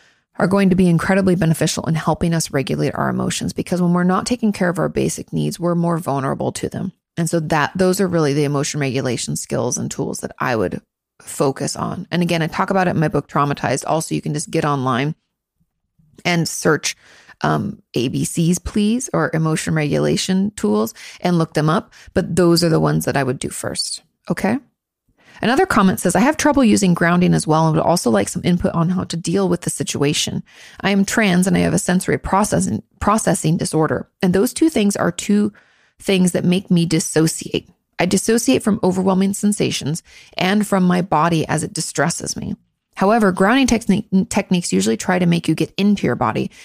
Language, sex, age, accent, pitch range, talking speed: English, female, 30-49, American, 160-195 Hz, 200 wpm